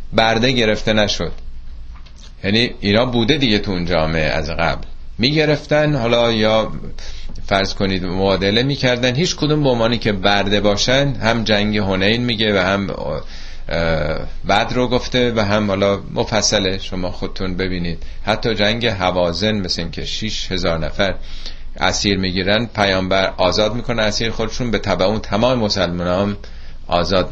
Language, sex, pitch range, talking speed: Persian, male, 85-110 Hz, 140 wpm